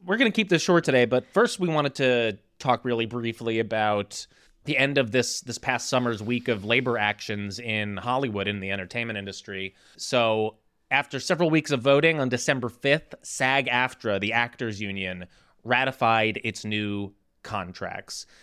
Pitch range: 105-140 Hz